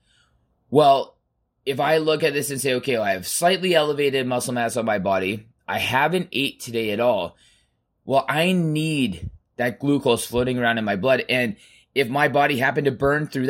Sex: male